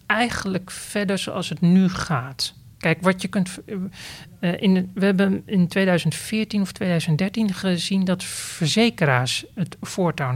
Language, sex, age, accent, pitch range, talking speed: Dutch, male, 40-59, Dutch, 140-185 Hz, 130 wpm